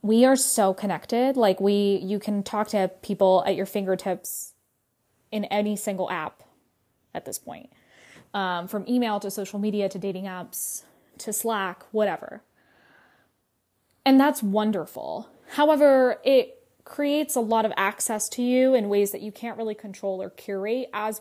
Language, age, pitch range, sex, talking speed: English, 10-29, 195-255 Hz, female, 155 wpm